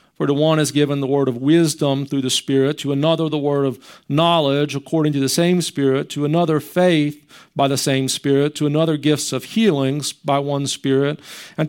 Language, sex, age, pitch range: English, male, 40-59, 145-180 Hz